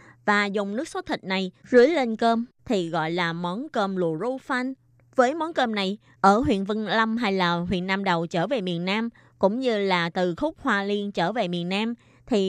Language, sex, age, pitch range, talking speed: Vietnamese, female, 20-39, 180-250 Hz, 220 wpm